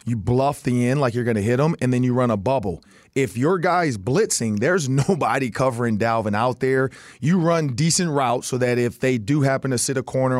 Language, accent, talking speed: English, American, 225 wpm